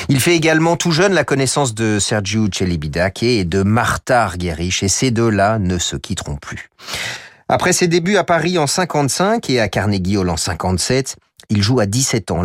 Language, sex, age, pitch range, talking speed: French, male, 40-59, 90-130 Hz, 190 wpm